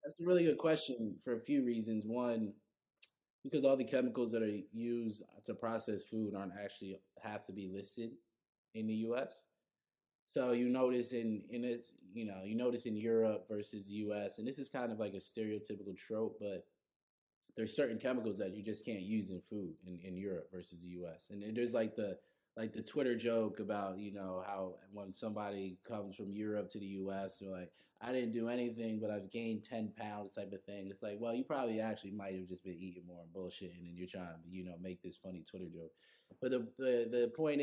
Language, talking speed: English, 215 wpm